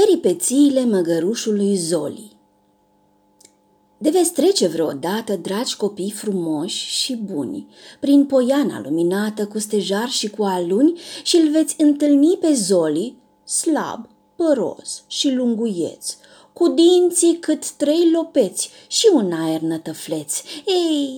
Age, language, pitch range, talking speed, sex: 30-49, Romanian, 215-310 Hz, 115 wpm, female